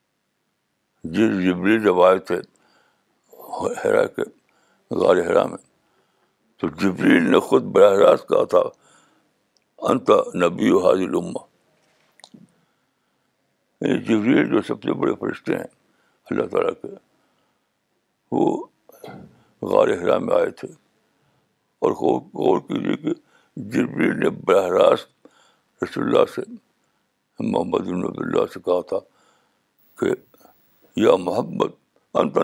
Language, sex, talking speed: Urdu, male, 105 wpm